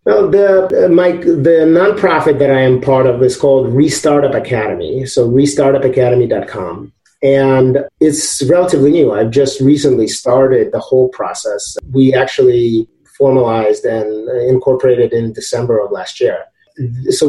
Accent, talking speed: American, 135 wpm